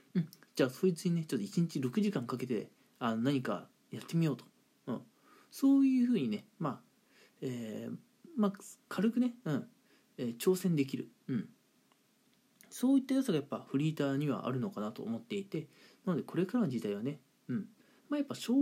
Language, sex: Japanese, male